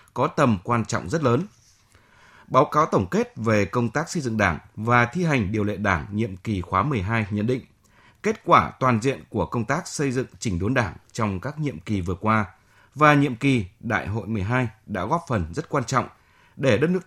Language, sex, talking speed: Vietnamese, male, 215 wpm